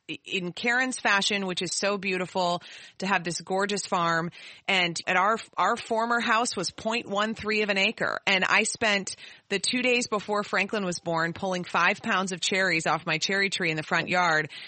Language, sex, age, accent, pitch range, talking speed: English, female, 30-49, American, 165-200 Hz, 190 wpm